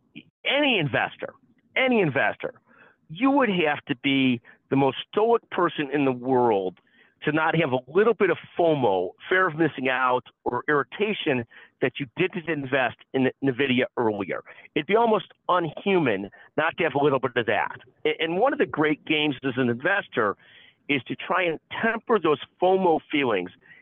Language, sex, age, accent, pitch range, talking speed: English, male, 50-69, American, 130-175 Hz, 165 wpm